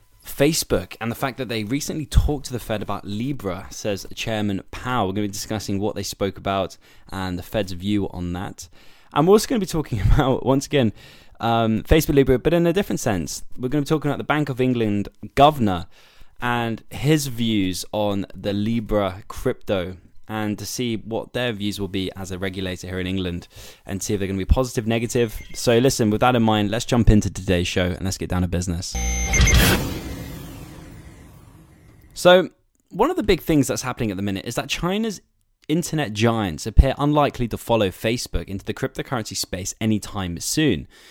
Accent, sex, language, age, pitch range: British, male, Japanese, 10-29, 95-135 Hz